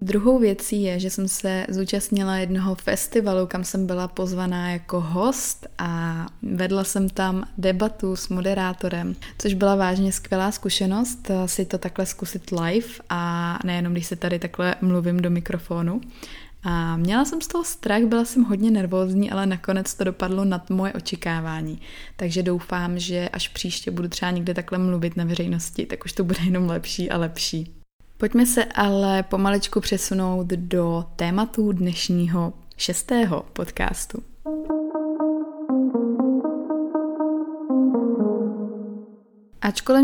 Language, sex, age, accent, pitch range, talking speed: Czech, female, 20-39, native, 180-225 Hz, 130 wpm